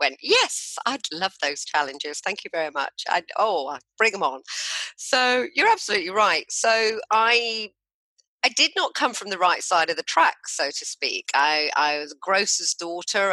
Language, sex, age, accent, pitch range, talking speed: English, female, 40-59, British, 150-190 Hz, 180 wpm